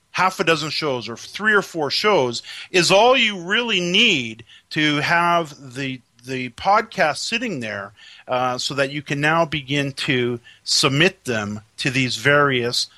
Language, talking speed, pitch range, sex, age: English, 155 wpm, 130-170 Hz, male, 40-59